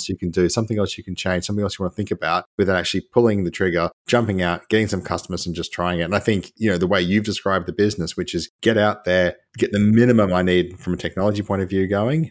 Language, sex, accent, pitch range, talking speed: English, male, Australian, 90-115 Hz, 280 wpm